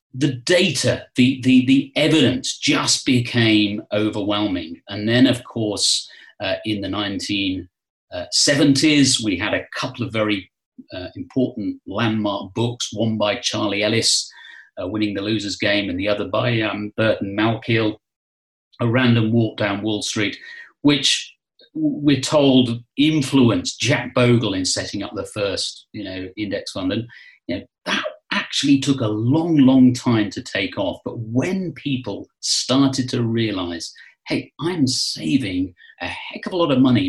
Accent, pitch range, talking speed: British, 110-150 Hz, 150 wpm